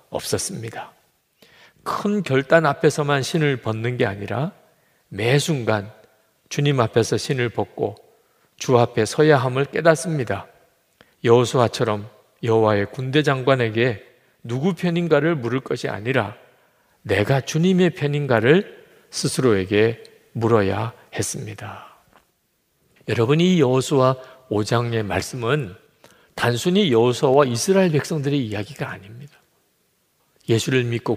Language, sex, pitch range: Korean, male, 115-150 Hz